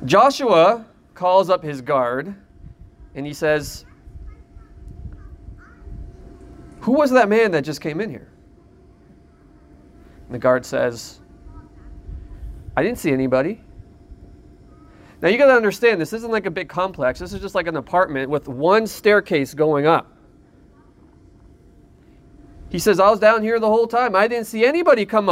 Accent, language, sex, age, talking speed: American, English, male, 30-49, 145 wpm